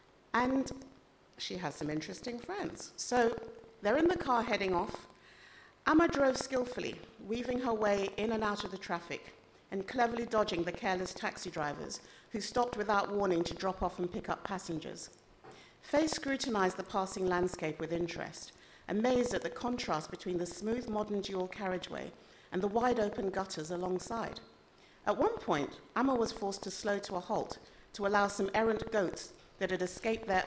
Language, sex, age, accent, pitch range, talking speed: English, female, 50-69, British, 175-230 Hz, 170 wpm